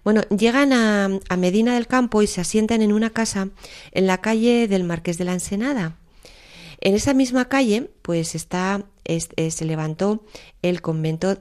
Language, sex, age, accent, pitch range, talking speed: Spanish, female, 30-49, Spanish, 165-195 Hz, 165 wpm